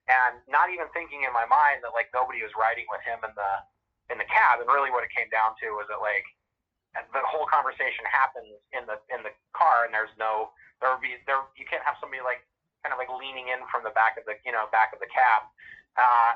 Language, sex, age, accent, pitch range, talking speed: English, male, 30-49, American, 110-155 Hz, 245 wpm